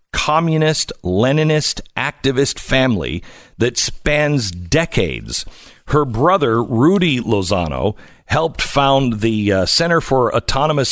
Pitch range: 115-155 Hz